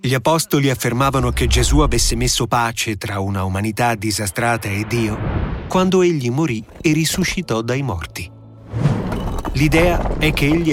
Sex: male